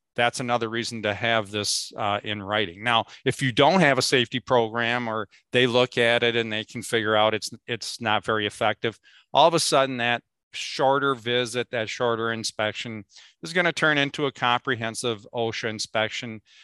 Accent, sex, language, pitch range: American, male, English, 110-130 Hz